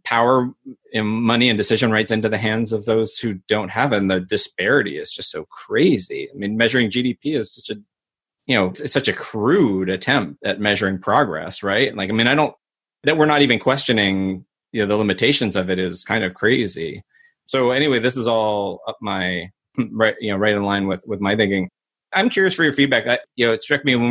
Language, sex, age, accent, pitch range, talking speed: English, male, 30-49, American, 100-125 Hz, 215 wpm